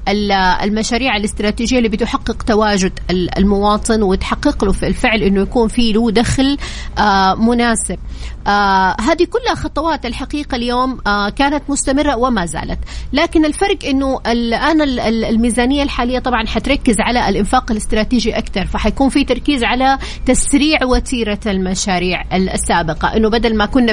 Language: Arabic